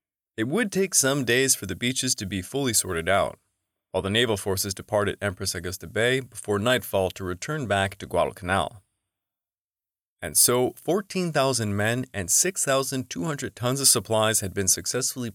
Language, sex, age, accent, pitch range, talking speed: English, male, 30-49, American, 95-130 Hz, 155 wpm